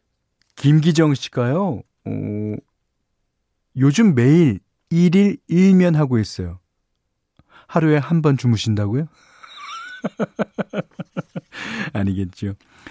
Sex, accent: male, native